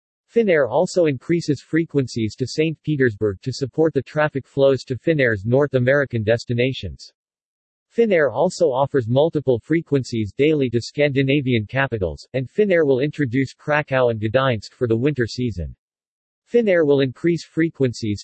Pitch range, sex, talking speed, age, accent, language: 120-150 Hz, male, 135 wpm, 50-69, American, English